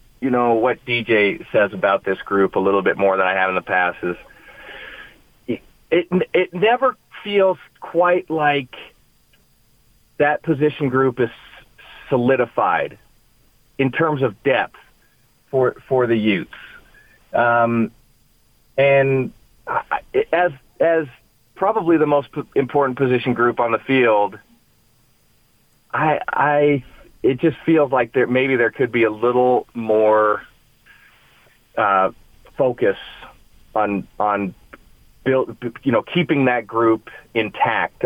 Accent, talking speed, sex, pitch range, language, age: American, 125 wpm, male, 110-140 Hz, English, 40-59